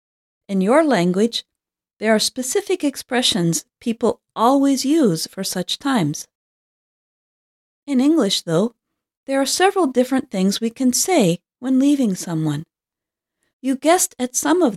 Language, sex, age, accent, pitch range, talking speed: English, female, 40-59, American, 185-275 Hz, 130 wpm